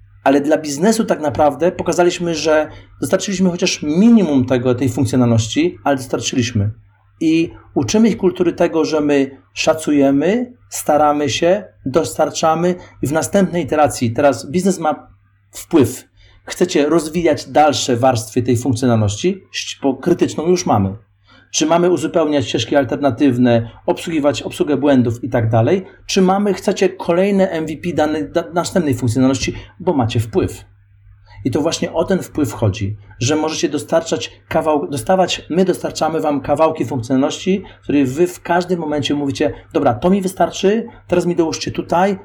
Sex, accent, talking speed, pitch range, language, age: male, native, 140 wpm, 120-170 Hz, Polish, 40-59